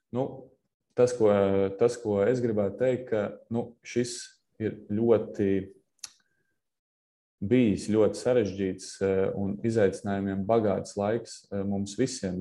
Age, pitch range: 20-39, 100-110 Hz